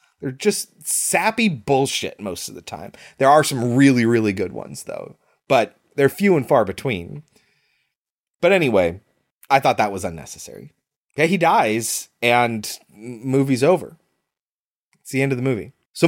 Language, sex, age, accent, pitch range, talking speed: English, male, 30-49, American, 120-170 Hz, 155 wpm